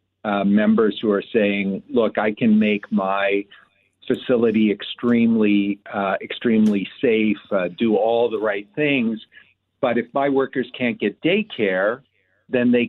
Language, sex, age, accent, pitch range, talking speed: English, male, 50-69, American, 110-135 Hz, 140 wpm